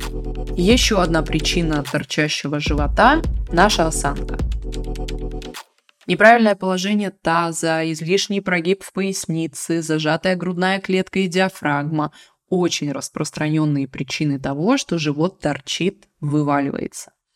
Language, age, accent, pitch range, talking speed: Russian, 20-39, native, 150-190 Hz, 95 wpm